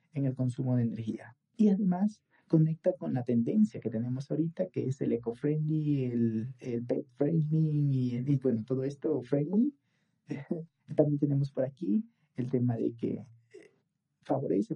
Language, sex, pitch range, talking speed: Spanish, male, 125-160 Hz, 155 wpm